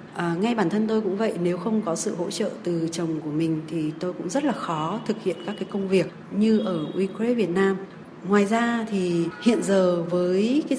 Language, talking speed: Vietnamese, 220 wpm